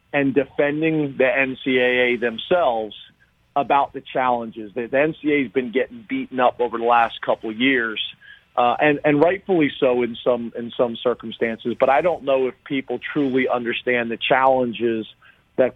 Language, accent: English, American